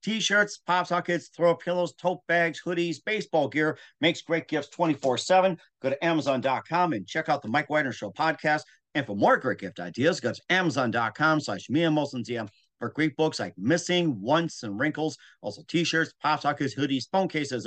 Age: 50-69